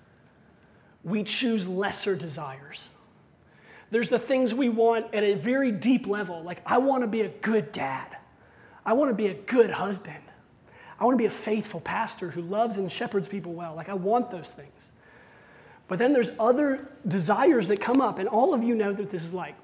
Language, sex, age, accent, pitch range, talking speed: English, male, 30-49, American, 190-240 Hz, 185 wpm